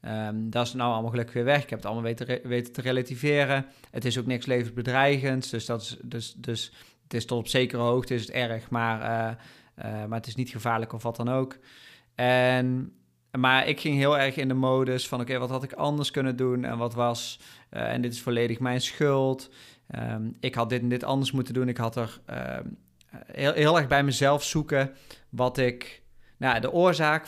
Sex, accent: male, Dutch